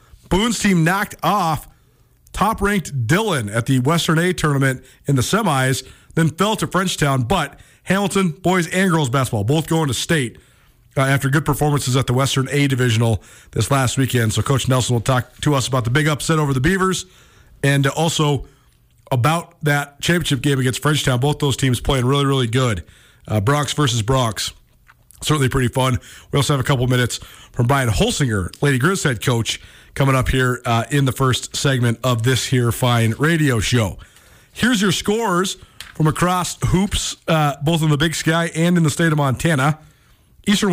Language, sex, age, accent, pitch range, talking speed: English, male, 40-59, American, 130-170 Hz, 180 wpm